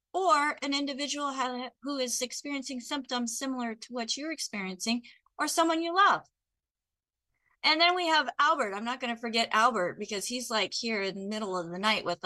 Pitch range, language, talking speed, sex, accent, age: 200-255 Hz, English, 185 wpm, female, American, 40-59